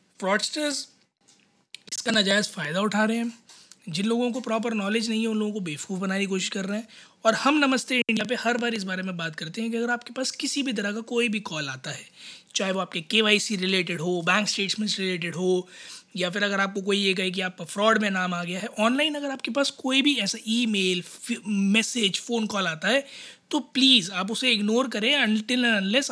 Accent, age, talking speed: native, 20-39, 220 wpm